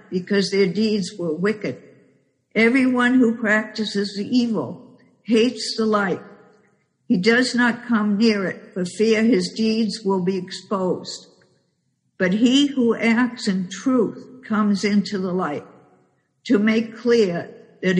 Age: 60-79